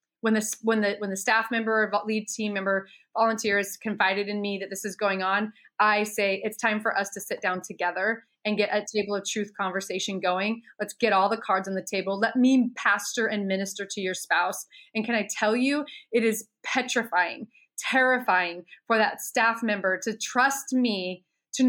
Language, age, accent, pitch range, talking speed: English, 30-49, American, 200-245 Hz, 200 wpm